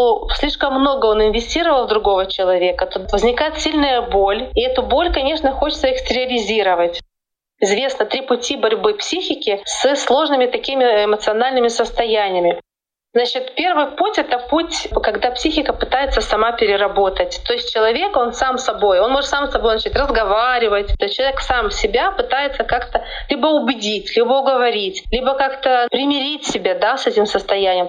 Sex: female